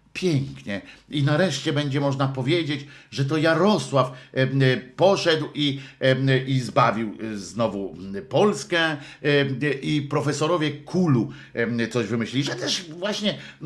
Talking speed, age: 100 wpm, 50-69